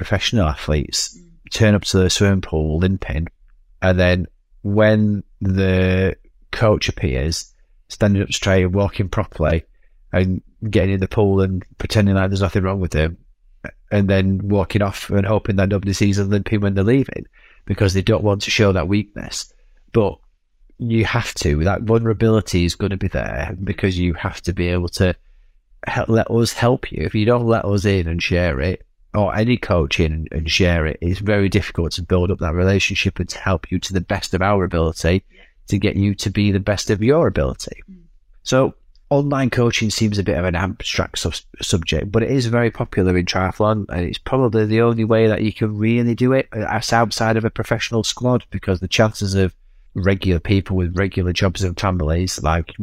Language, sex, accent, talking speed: English, male, British, 195 wpm